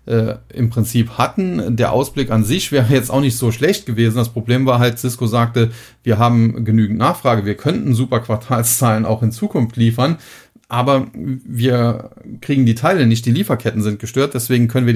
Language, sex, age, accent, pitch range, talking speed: German, male, 40-59, German, 105-125 Hz, 185 wpm